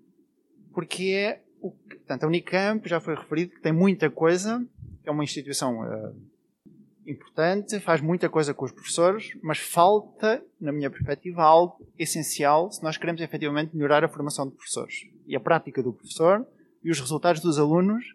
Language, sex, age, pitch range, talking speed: Portuguese, male, 20-39, 150-185 Hz, 170 wpm